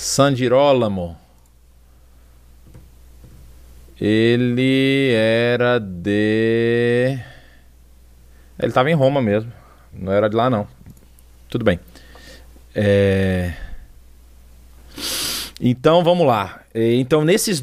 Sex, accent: male, Brazilian